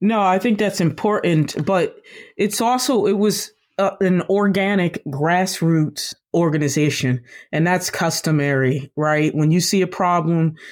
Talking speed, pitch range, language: 130 wpm, 140-180 Hz, English